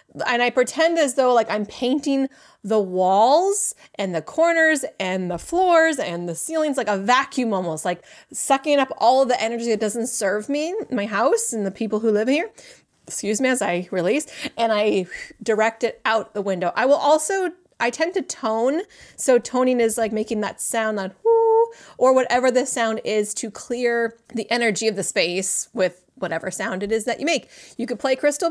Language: English